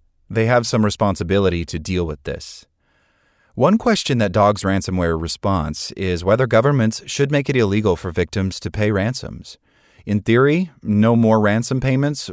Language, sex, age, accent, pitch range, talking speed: English, male, 30-49, American, 85-115 Hz, 155 wpm